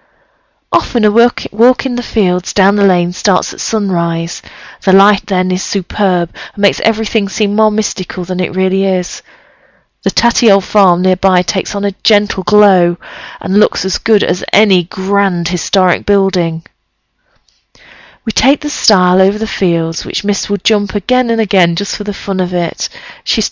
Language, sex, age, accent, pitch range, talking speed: English, female, 40-59, British, 185-215 Hz, 170 wpm